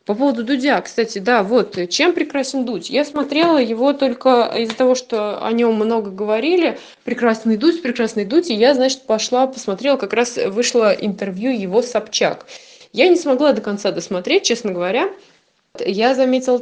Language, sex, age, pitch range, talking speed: Russian, female, 20-39, 205-275 Hz, 165 wpm